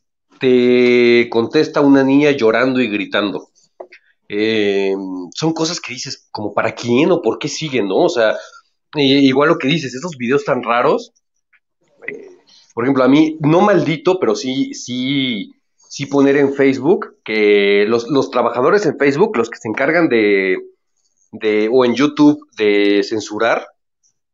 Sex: male